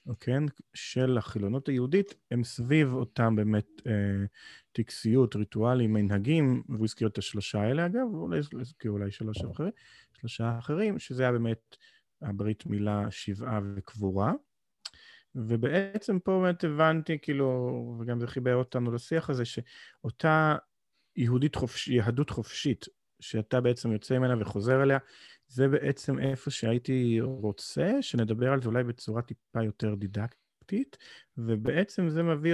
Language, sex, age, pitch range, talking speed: Hebrew, male, 40-59, 105-140 Hz, 125 wpm